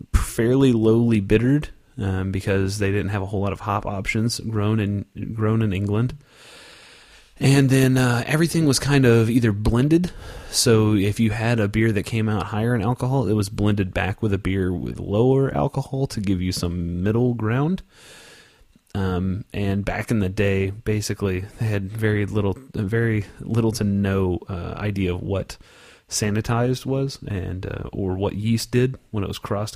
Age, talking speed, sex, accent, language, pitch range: 30-49, 175 wpm, male, American, English, 95-115 Hz